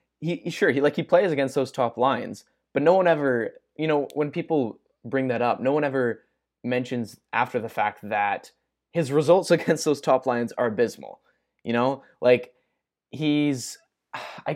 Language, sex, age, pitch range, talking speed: English, male, 20-39, 115-145 Hz, 175 wpm